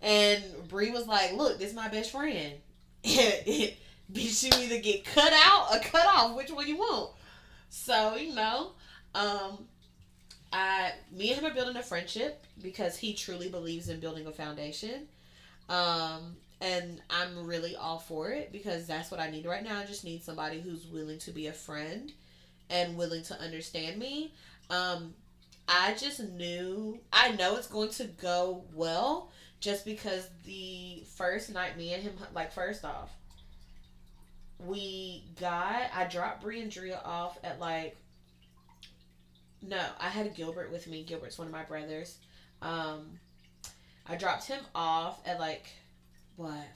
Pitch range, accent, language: 155-210 Hz, American, English